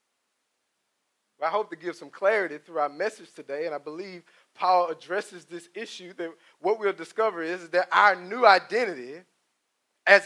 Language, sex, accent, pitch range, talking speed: English, male, American, 185-240 Hz, 160 wpm